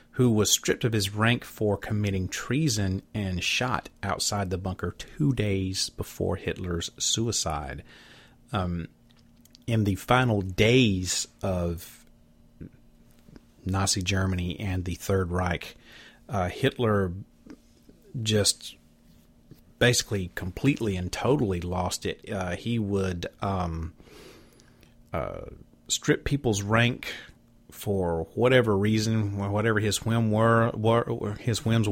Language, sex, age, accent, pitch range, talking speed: English, male, 30-49, American, 90-115 Hz, 110 wpm